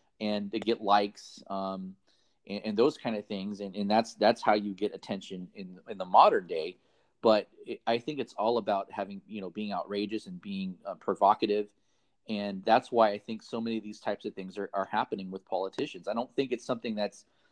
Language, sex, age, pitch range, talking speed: English, male, 30-49, 100-135 Hz, 215 wpm